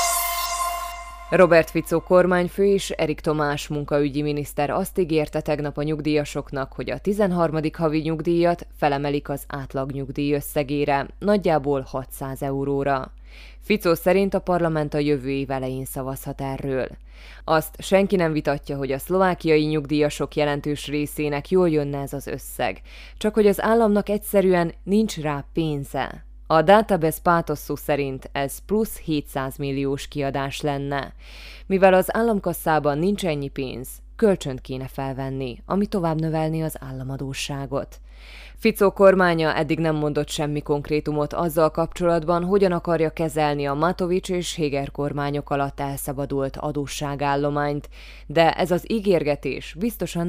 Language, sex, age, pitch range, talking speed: Hungarian, female, 20-39, 140-170 Hz, 130 wpm